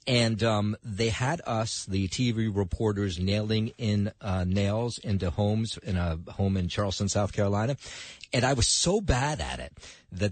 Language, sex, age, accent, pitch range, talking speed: English, male, 50-69, American, 90-120 Hz, 170 wpm